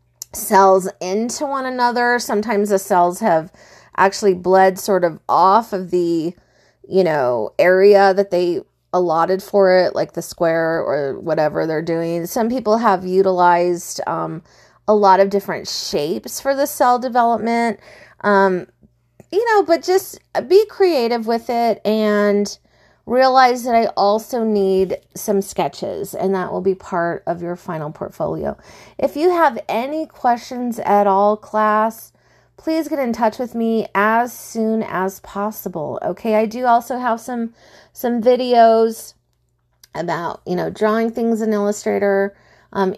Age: 30-49